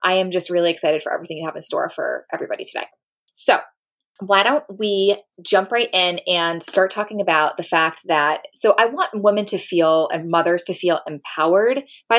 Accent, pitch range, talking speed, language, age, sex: American, 165-210 Hz, 195 wpm, English, 20-39, female